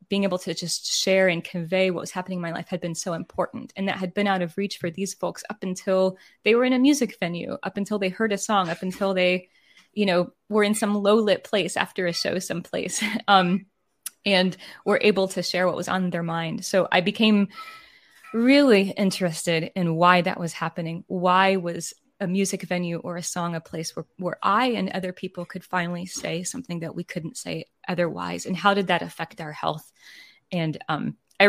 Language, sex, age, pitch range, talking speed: English, female, 20-39, 175-205 Hz, 215 wpm